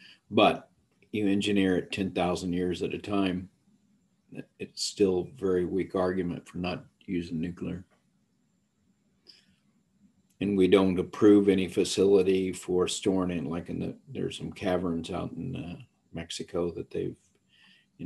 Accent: American